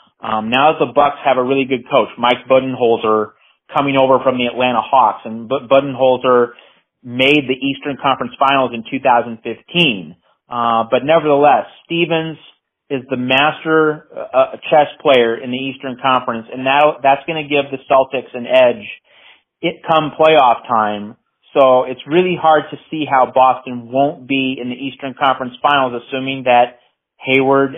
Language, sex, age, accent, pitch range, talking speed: English, male, 30-49, American, 125-150 Hz, 155 wpm